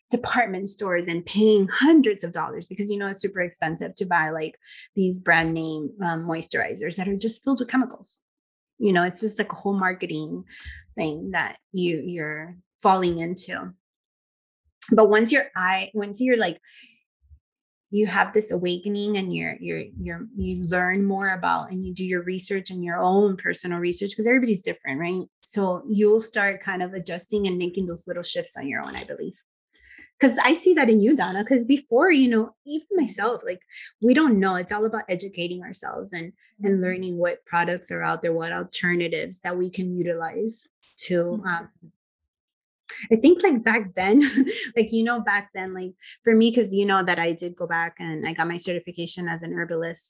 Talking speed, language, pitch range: 190 wpm, English, 175-220 Hz